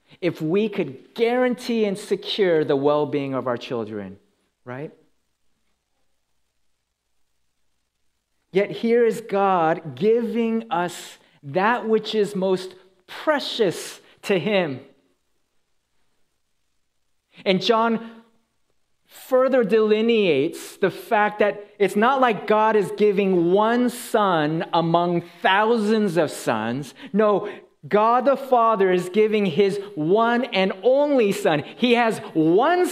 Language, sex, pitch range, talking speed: English, male, 185-235 Hz, 105 wpm